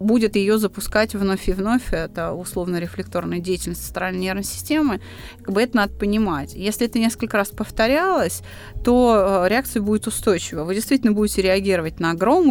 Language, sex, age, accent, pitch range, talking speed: Russian, female, 20-39, native, 190-245 Hz, 145 wpm